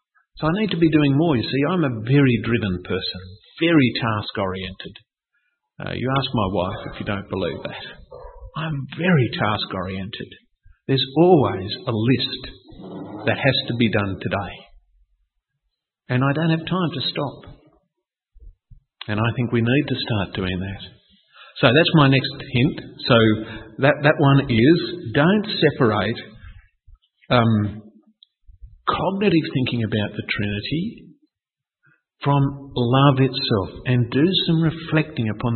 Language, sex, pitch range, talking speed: English, male, 105-150 Hz, 135 wpm